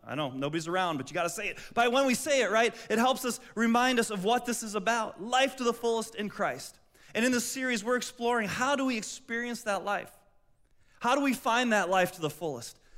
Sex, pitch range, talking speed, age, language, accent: male, 185-235 Hz, 240 wpm, 30-49, English, American